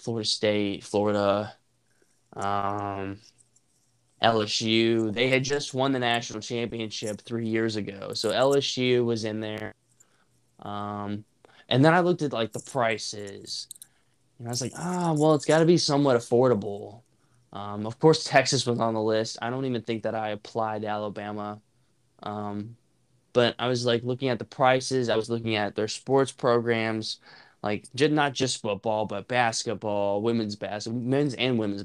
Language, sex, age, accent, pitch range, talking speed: English, male, 10-29, American, 105-125 Hz, 160 wpm